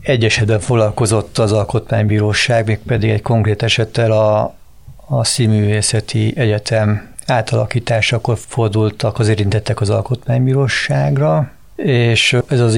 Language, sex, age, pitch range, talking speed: Hungarian, male, 50-69, 105-120 Hz, 105 wpm